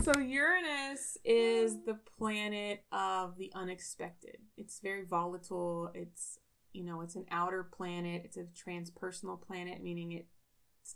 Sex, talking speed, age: female, 130 wpm, 20-39